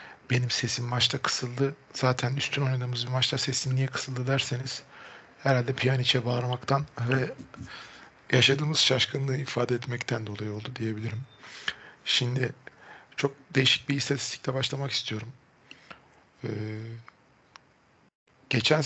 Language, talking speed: Turkish, 105 wpm